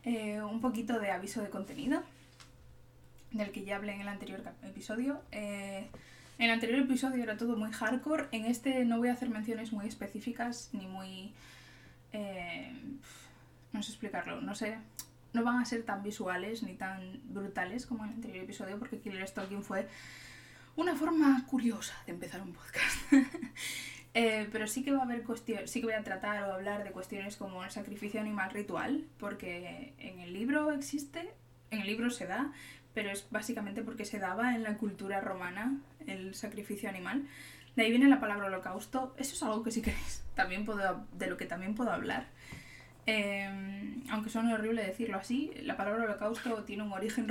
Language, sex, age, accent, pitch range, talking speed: Spanish, female, 10-29, Spanish, 205-250 Hz, 180 wpm